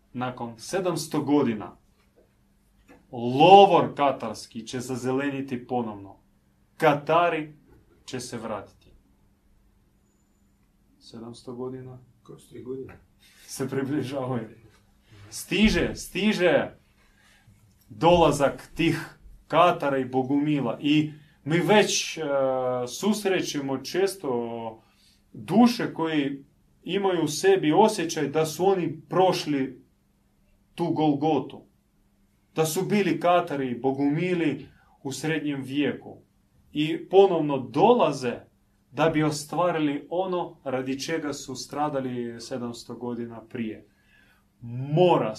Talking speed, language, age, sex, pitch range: 90 wpm, Croatian, 30-49, male, 120-160 Hz